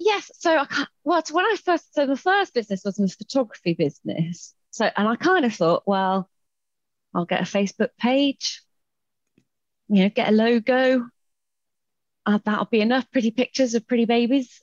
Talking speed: 170 wpm